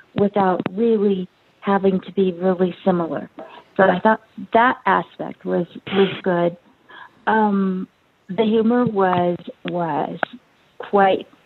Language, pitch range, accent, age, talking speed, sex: English, 185-220 Hz, American, 40-59, 110 wpm, female